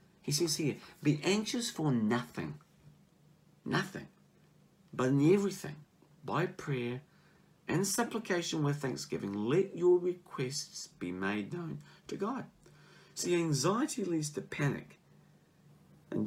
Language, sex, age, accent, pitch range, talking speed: English, male, 50-69, British, 140-175 Hz, 115 wpm